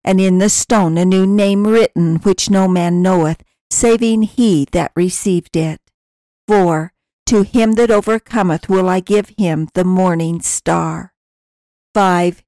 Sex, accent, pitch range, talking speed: female, American, 175-215 Hz, 145 wpm